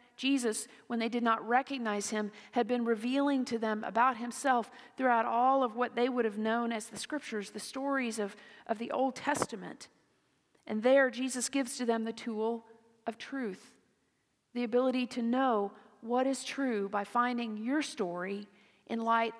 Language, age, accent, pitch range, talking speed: English, 40-59, American, 210-245 Hz, 170 wpm